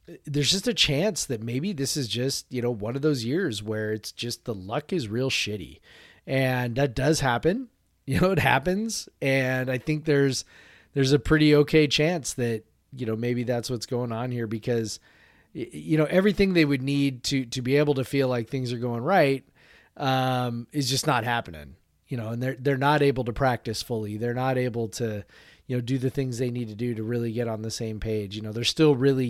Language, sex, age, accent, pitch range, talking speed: English, male, 30-49, American, 120-145 Hz, 220 wpm